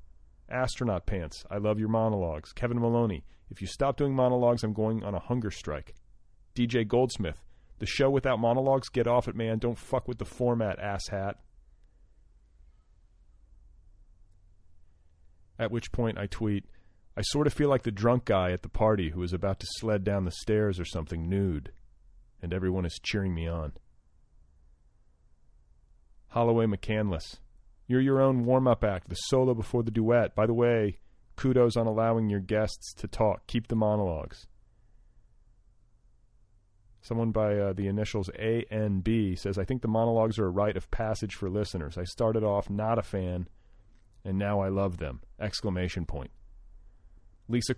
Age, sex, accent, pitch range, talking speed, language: 40-59, male, American, 90-115 Hz, 160 wpm, English